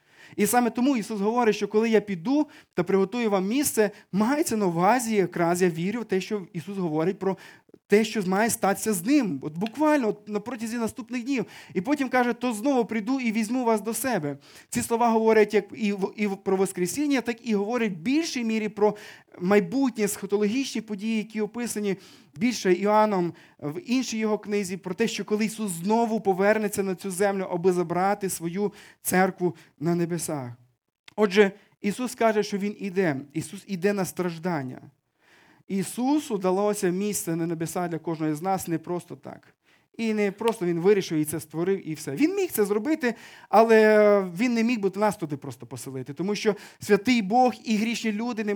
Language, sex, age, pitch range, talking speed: Ukrainian, male, 20-39, 175-220 Hz, 175 wpm